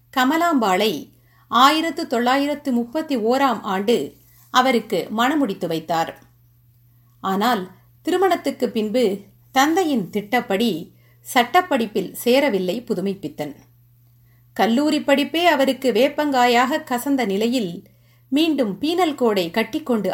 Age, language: 50-69, Tamil